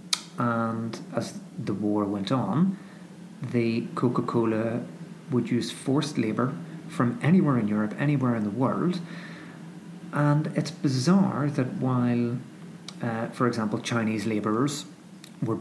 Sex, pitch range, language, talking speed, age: male, 115-180 Hz, English, 120 wpm, 40-59